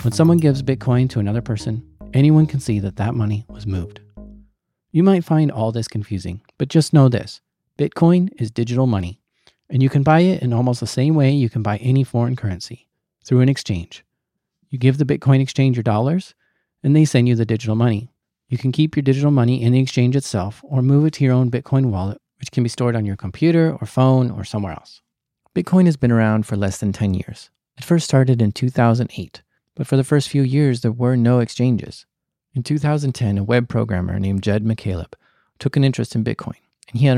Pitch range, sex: 105-135 Hz, male